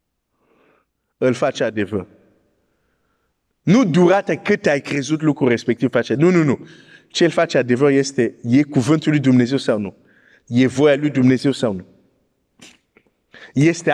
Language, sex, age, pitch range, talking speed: Romanian, male, 50-69, 130-175 Hz, 130 wpm